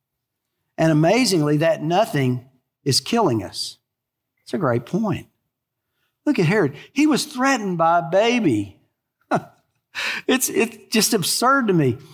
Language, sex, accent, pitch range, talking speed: English, male, American, 150-225 Hz, 130 wpm